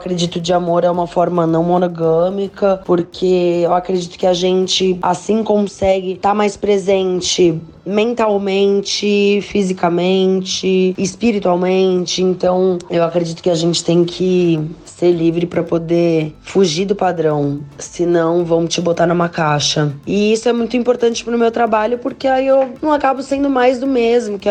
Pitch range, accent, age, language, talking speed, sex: 175-210 Hz, Brazilian, 20-39, Portuguese, 155 wpm, female